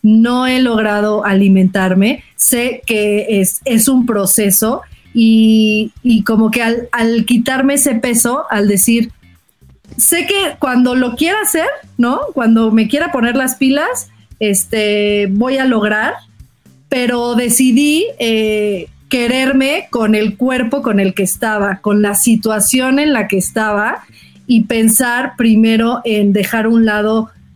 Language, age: Spanish, 30-49